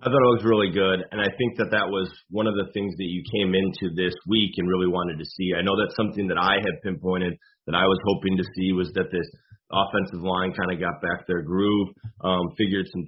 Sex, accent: male, American